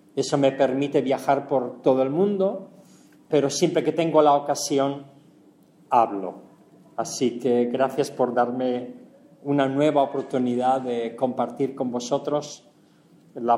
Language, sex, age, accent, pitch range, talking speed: English, male, 40-59, Spanish, 140-190 Hz, 125 wpm